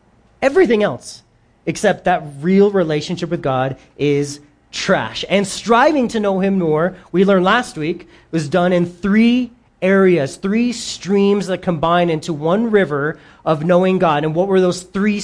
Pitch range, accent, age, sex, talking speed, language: 140-185 Hz, American, 30-49, male, 160 wpm, English